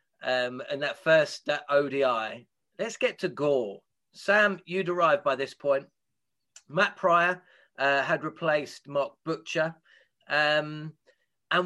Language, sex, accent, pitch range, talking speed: English, male, British, 145-195 Hz, 130 wpm